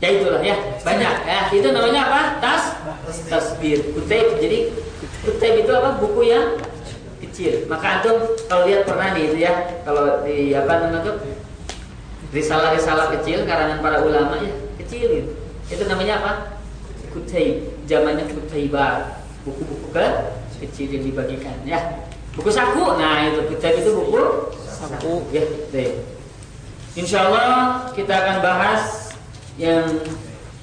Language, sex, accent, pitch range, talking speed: Indonesian, female, native, 135-175 Hz, 130 wpm